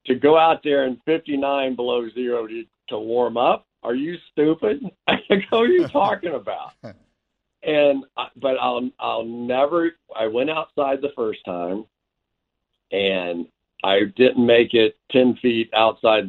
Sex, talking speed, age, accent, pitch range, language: male, 150 wpm, 50-69, American, 110-140 Hz, English